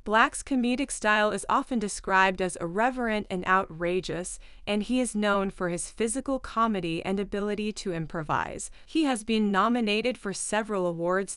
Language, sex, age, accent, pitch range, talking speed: English, female, 20-39, American, 185-230 Hz, 155 wpm